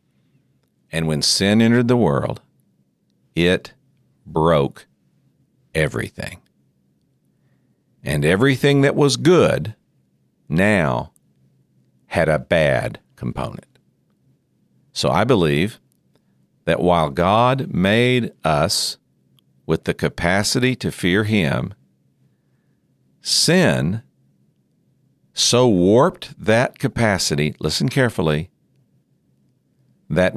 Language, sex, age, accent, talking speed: English, male, 50-69, American, 80 wpm